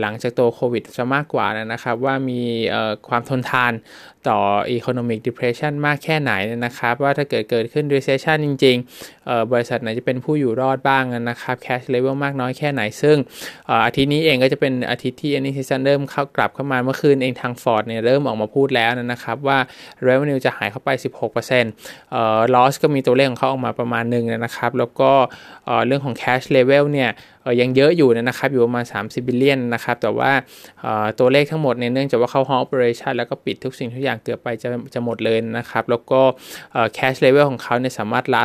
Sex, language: male, Thai